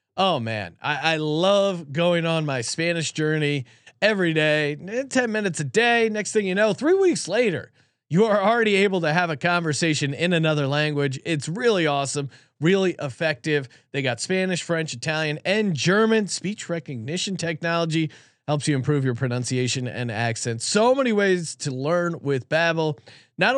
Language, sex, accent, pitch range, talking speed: English, male, American, 140-190 Hz, 165 wpm